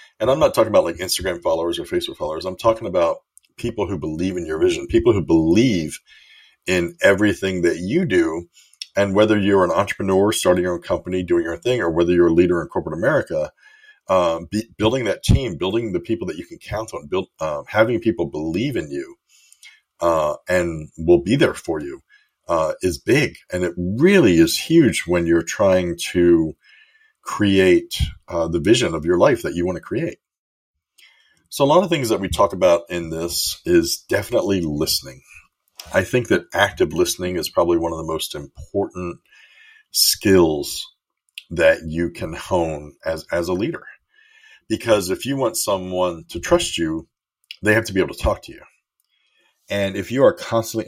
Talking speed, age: 180 wpm, 50-69